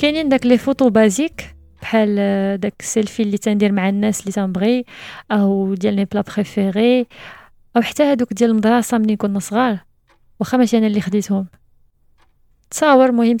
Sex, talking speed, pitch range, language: female, 150 wpm, 205-230 Hz, French